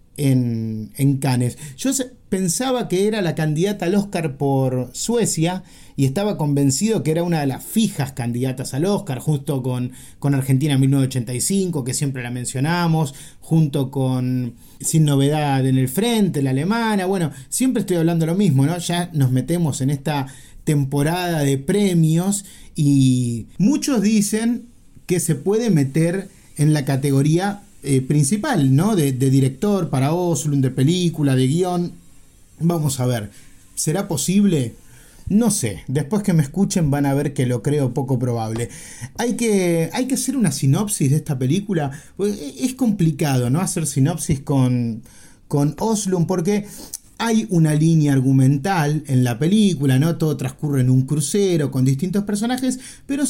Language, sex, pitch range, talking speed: Spanish, male, 135-195 Hz, 150 wpm